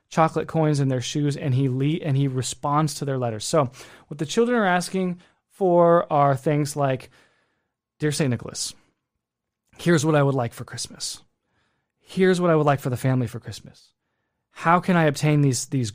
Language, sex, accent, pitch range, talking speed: English, male, American, 125-160 Hz, 190 wpm